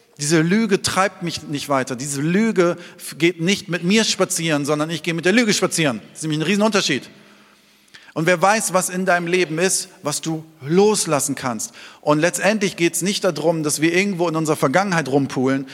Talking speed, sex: 190 wpm, male